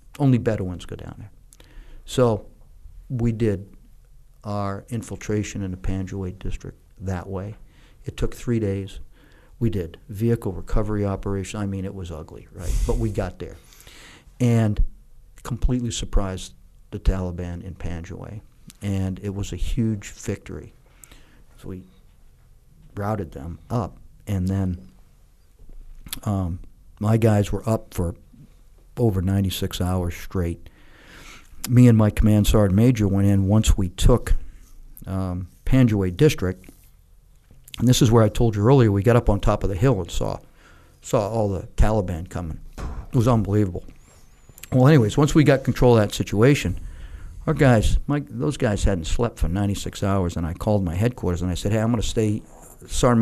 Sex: male